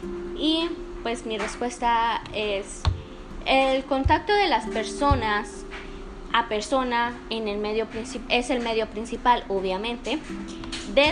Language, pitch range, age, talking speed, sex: Spanish, 230-275 Hz, 20-39, 120 wpm, female